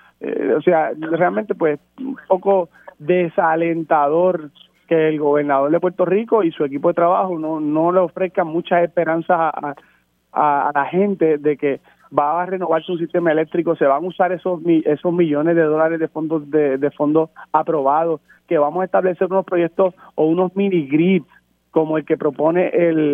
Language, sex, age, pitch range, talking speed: Spanish, male, 30-49, 150-180 Hz, 175 wpm